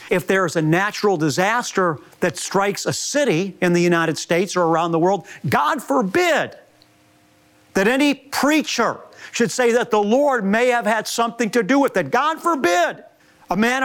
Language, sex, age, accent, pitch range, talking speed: English, male, 50-69, American, 175-245 Hz, 175 wpm